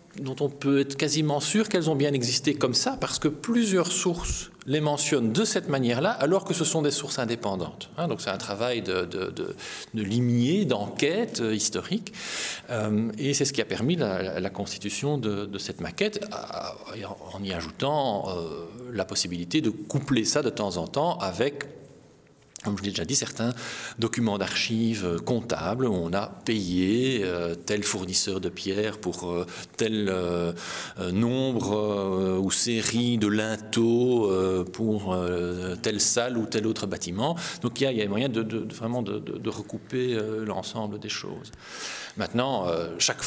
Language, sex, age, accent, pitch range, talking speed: French, male, 40-59, French, 100-140 Hz, 160 wpm